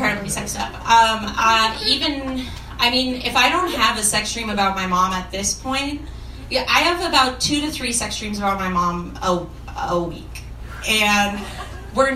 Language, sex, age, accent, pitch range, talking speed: English, female, 30-49, American, 185-285 Hz, 190 wpm